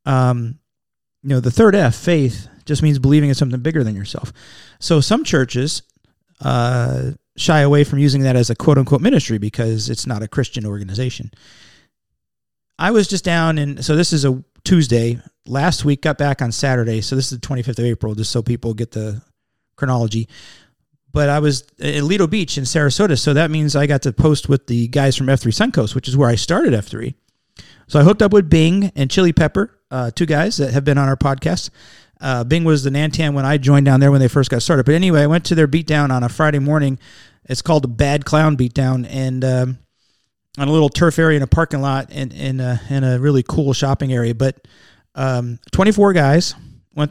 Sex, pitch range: male, 130-155 Hz